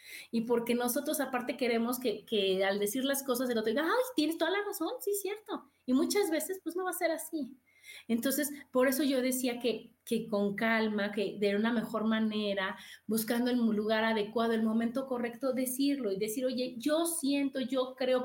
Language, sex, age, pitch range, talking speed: Spanish, female, 30-49, 220-285 Hz, 195 wpm